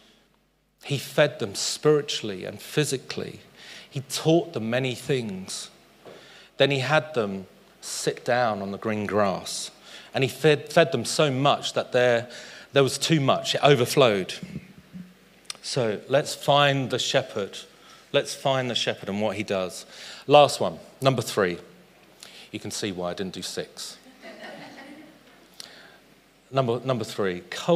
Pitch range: 100-135 Hz